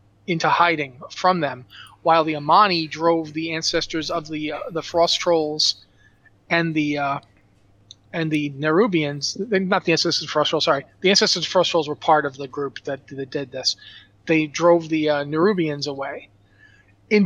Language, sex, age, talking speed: English, male, 30-49, 180 wpm